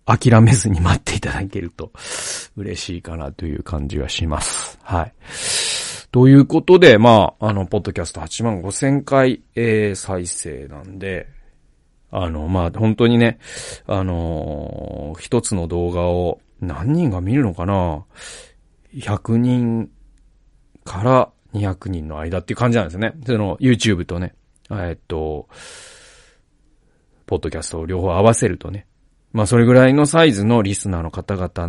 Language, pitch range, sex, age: Japanese, 85-120 Hz, male, 40-59